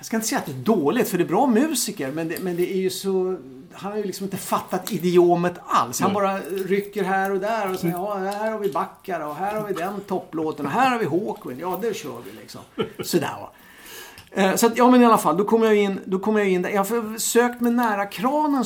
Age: 50-69